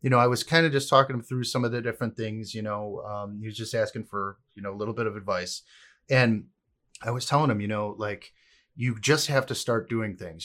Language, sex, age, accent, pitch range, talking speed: English, male, 30-49, American, 110-135 Hz, 260 wpm